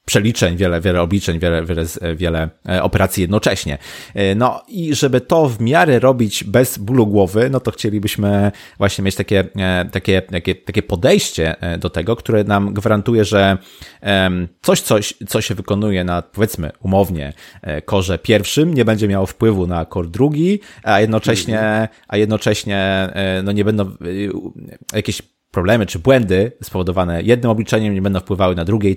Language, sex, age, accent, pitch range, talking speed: Polish, male, 30-49, native, 90-110 Hz, 145 wpm